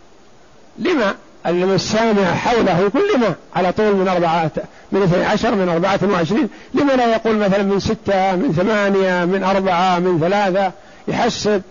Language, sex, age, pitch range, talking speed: Arabic, male, 60-79, 185-215 Hz, 140 wpm